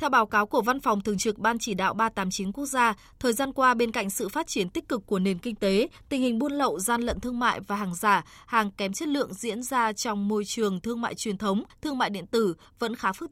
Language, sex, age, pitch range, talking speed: Vietnamese, female, 20-39, 210-260 Hz, 265 wpm